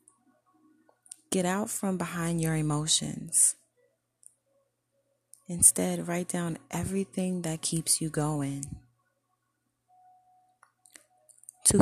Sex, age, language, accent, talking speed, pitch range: female, 20-39, English, American, 75 wpm, 150-220 Hz